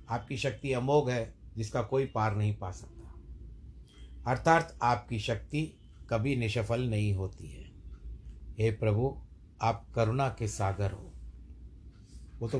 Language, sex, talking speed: Hindi, male, 130 wpm